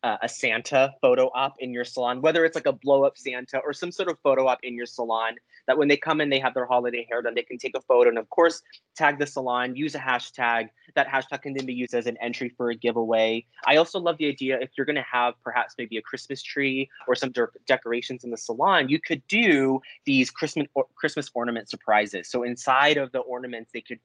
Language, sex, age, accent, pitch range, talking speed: English, male, 20-39, American, 120-150 Hz, 240 wpm